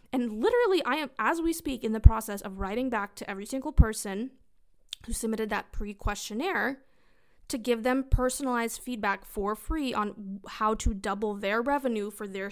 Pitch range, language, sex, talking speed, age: 210-260 Hz, English, female, 175 wpm, 20-39